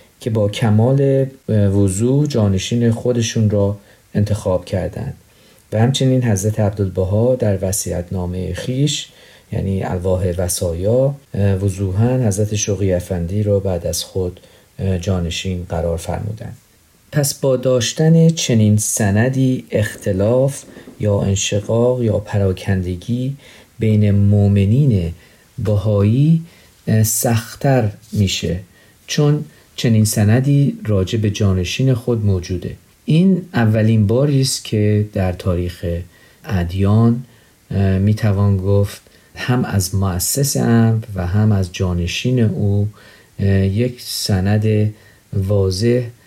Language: Persian